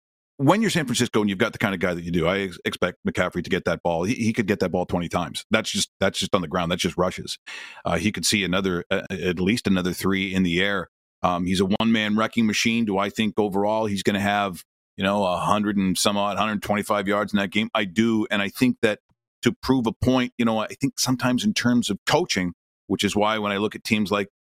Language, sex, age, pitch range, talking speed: English, male, 40-59, 100-125 Hz, 265 wpm